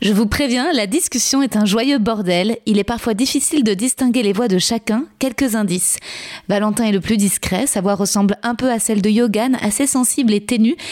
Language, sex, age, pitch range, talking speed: French, female, 20-39, 200-240 Hz, 215 wpm